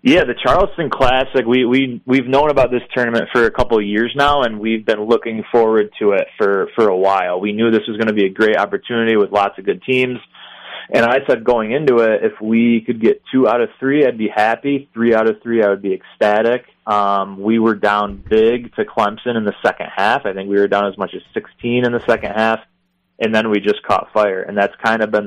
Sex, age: male, 20-39